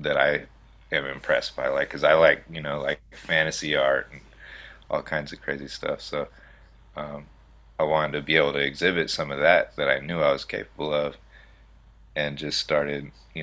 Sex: male